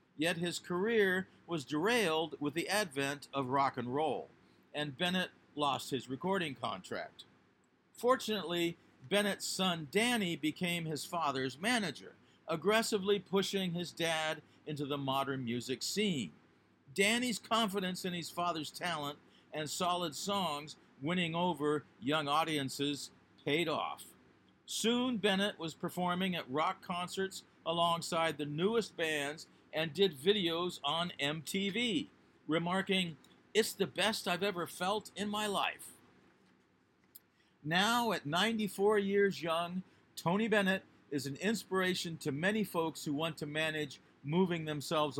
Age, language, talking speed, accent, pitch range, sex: 50-69, English, 125 wpm, American, 150-195 Hz, male